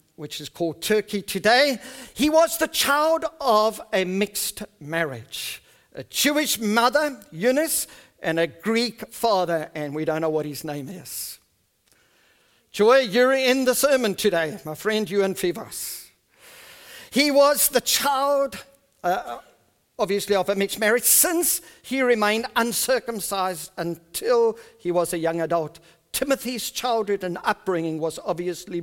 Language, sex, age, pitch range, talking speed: English, male, 50-69, 155-240 Hz, 135 wpm